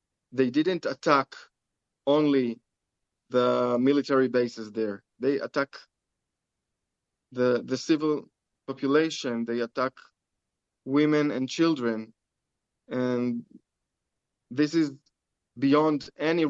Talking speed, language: 85 wpm, English